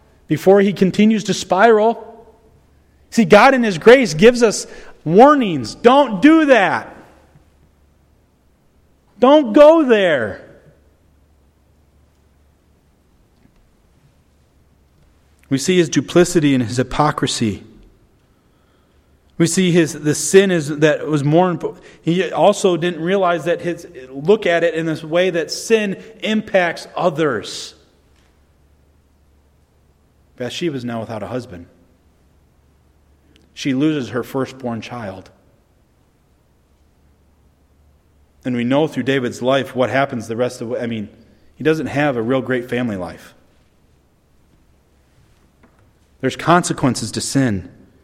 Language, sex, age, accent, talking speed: English, male, 40-59, American, 110 wpm